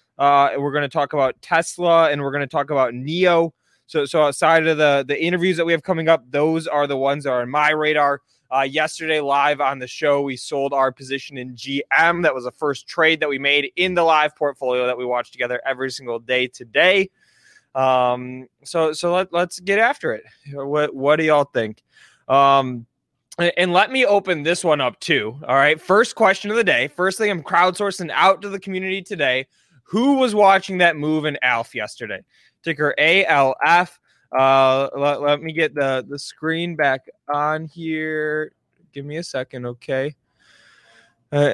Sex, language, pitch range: male, English, 135-165 Hz